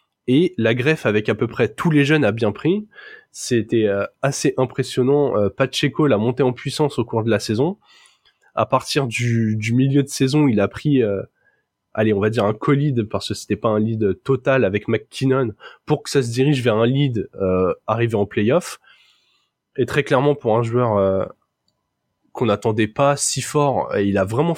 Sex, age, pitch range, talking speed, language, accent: male, 20-39, 110-145 Hz, 195 wpm, French, French